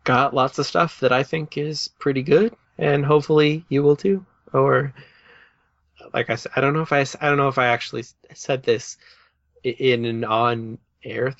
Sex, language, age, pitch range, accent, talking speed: male, English, 20-39, 110-140 Hz, American, 185 wpm